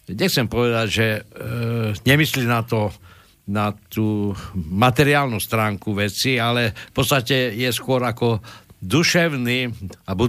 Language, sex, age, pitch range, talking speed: Slovak, male, 60-79, 110-145 Hz, 115 wpm